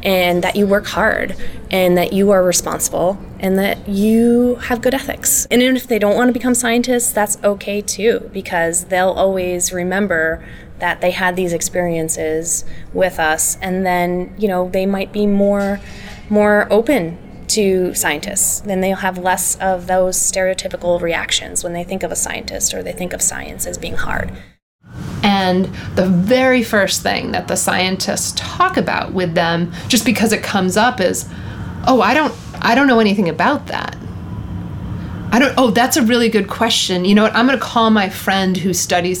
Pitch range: 180-220 Hz